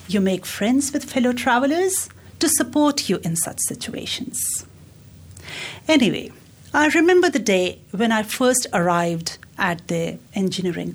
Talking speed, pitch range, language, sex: 130 wpm, 180-280 Hz, English, female